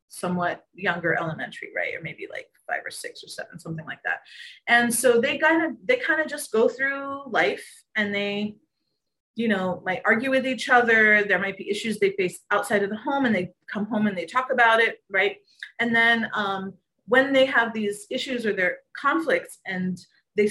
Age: 30-49